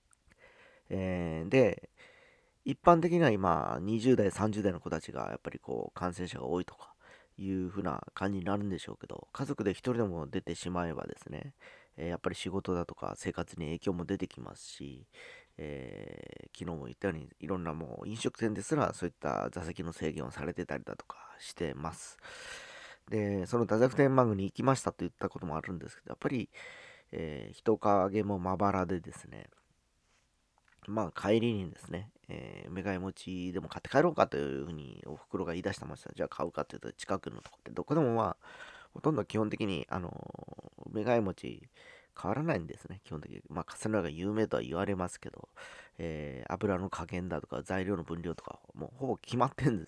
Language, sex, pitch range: Japanese, male, 85-110 Hz